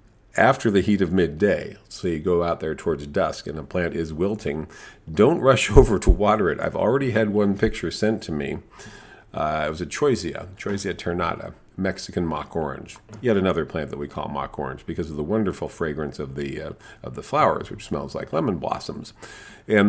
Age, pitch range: 40-59, 75-105 Hz